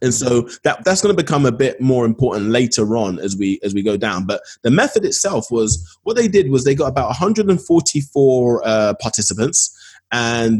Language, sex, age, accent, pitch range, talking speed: English, male, 20-39, British, 110-140 Hz, 200 wpm